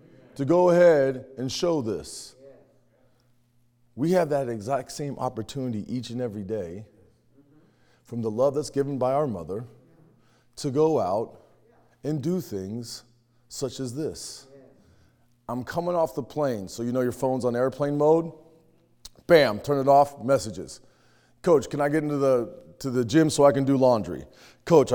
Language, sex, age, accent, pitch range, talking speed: English, male, 30-49, American, 120-175 Hz, 160 wpm